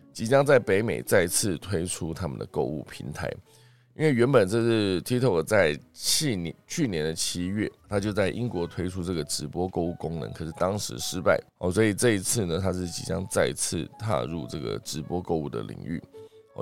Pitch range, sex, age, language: 85-115 Hz, male, 20-39, Chinese